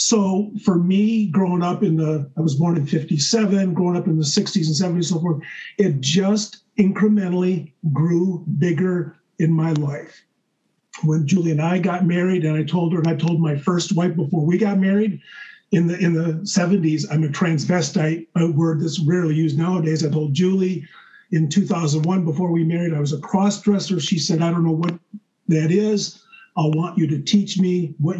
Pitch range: 160-200 Hz